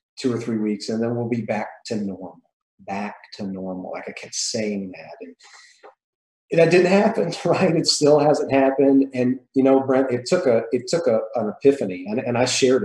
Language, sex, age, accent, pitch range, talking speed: English, male, 40-59, American, 110-130 Hz, 210 wpm